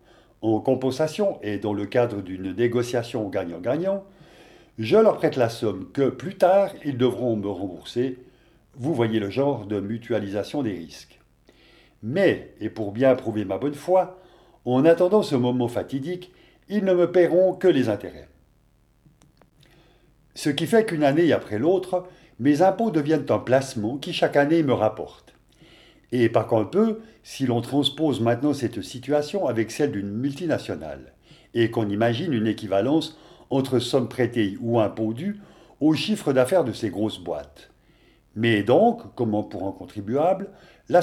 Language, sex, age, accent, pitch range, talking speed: French, male, 50-69, French, 110-170 Hz, 150 wpm